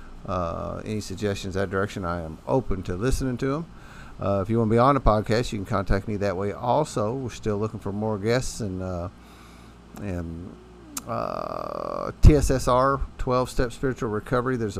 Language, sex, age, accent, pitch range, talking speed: English, male, 50-69, American, 95-110 Hz, 175 wpm